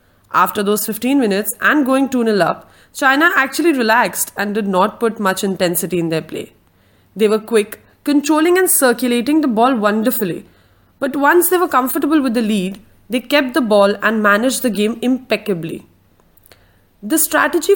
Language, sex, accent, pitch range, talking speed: English, female, Indian, 190-265 Hz, 160 wpm